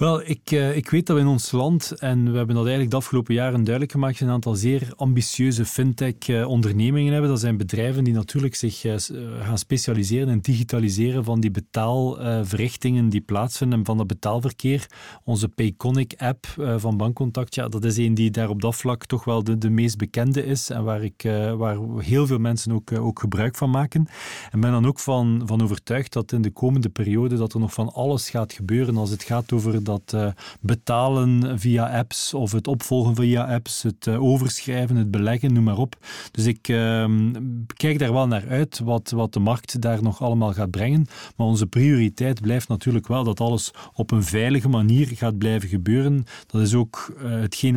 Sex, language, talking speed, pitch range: male, Dutch, 205 wpm, 110-130 Hz